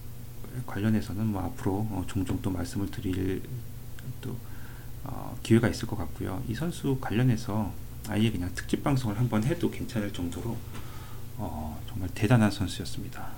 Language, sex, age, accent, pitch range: Korean, male, 40-59, native, 105-120 Hz